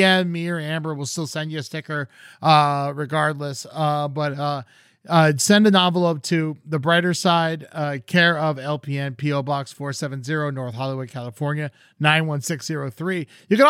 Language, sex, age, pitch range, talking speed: English, male, 30-49, 140-170 Hz, 155 wpm